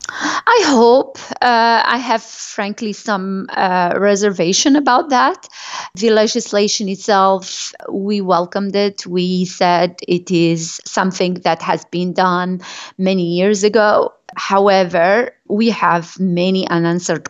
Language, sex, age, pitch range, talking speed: English, female, 30-49, 180-215 Hz, 120 wpm